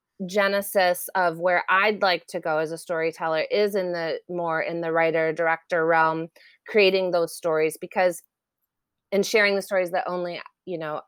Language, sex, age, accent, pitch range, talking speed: English, female, 30-49, American, 170-195 Hz, 170 wpm